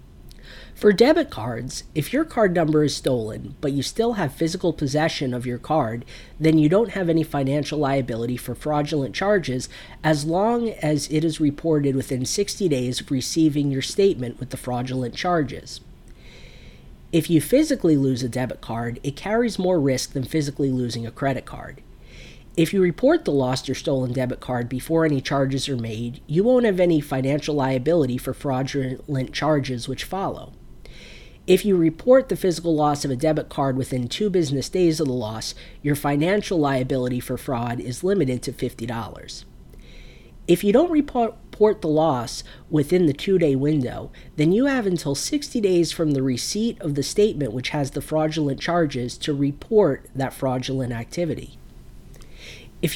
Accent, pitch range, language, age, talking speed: American, 130-170 Hz, English, 40-59, 165 wpm